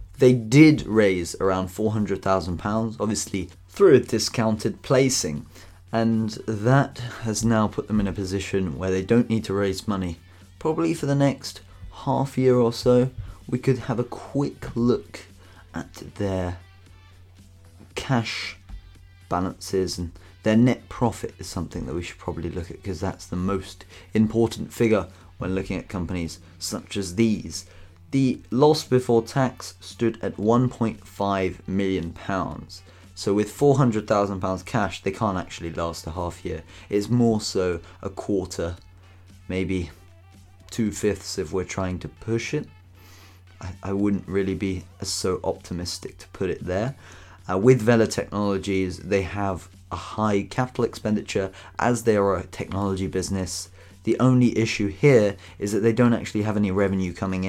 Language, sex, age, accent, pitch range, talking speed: English, male, 30-49, British, 95-110 Hz, 150 wpm